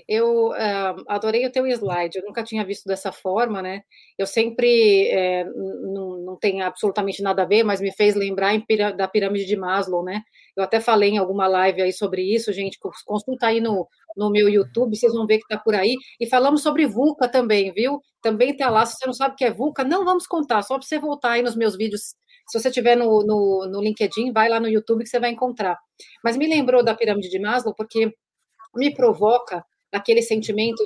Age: 30-49